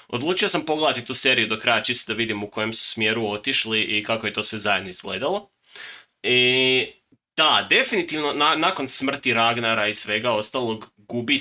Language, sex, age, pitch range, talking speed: Croatian, male, 20-39, 105-125 Hz, 175 wpm